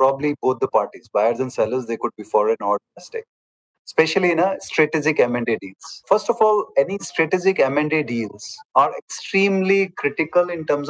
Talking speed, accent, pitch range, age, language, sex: 170 wpm, Indian, 125-170 Hz, 30-49, English, male